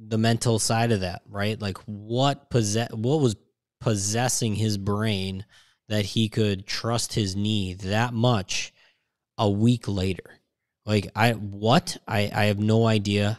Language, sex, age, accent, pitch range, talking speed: English, male, 20-39, American, 100-115 Hz, 150 wpm